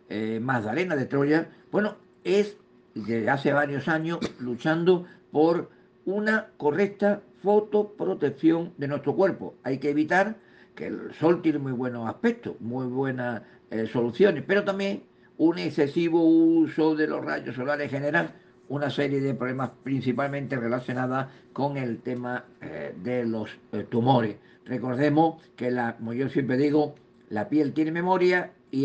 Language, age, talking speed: Spanish, 50-69, 140 wpm